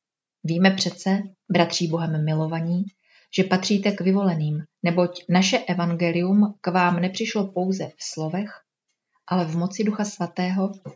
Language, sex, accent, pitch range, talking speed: Czech, female, native, 175-210 Hz, 125 wpm